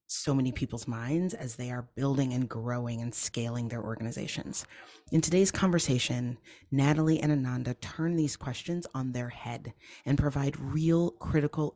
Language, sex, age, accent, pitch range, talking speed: English, female, 30-49, American, 120-155 Hz, 155 wpm